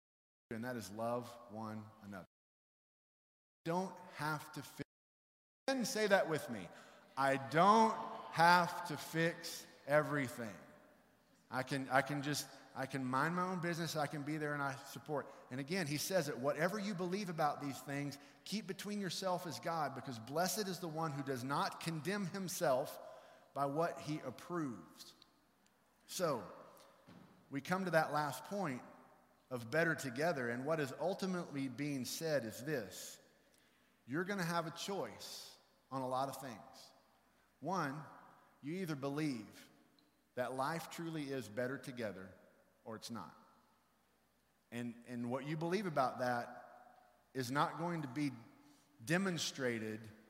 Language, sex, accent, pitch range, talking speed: English, male, American, 130-170 Hz, 150 wpm